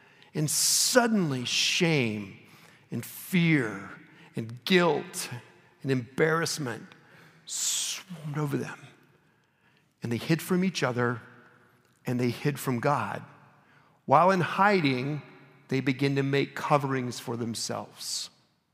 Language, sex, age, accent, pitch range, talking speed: English, male, 50-69, American, 130-160 Hz, 105 wpm